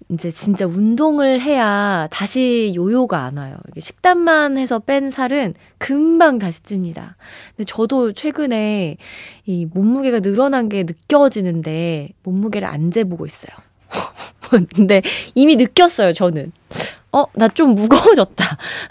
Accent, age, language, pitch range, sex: native, 20-39, Korean, 185-275 Hz, female